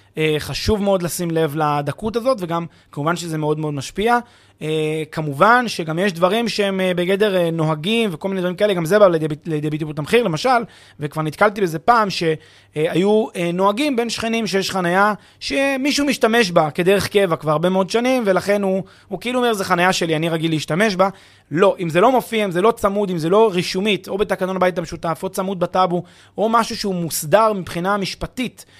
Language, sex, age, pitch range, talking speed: Hebrew, male, 30-49, 155-205 Hz, 190 wpm